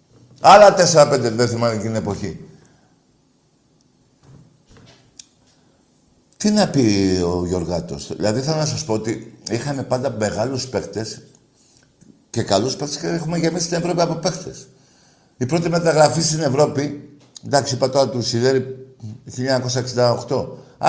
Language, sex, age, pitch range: Greek, male, 50-69, 115-150 Hz